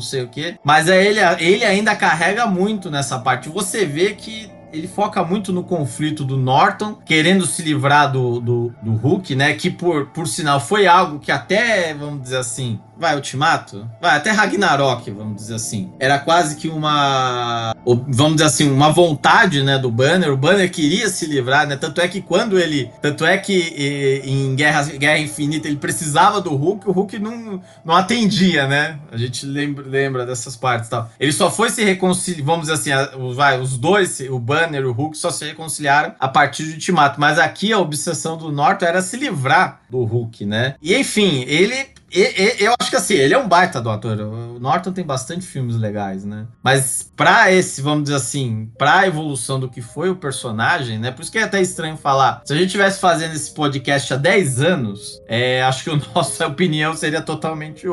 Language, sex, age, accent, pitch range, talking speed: Portuguese, male, 20-39, Brazilian, 135-180 Hz, 200 wpm